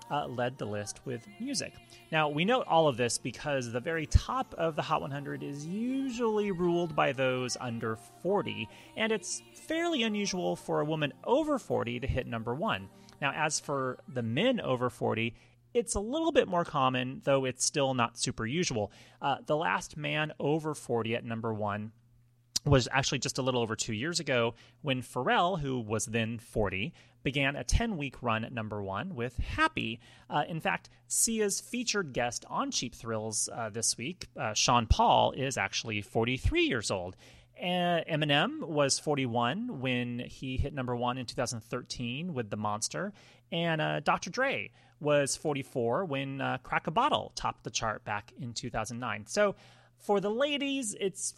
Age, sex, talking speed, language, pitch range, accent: 30-49, male, 175 wpm, English, 115-165 Hz, American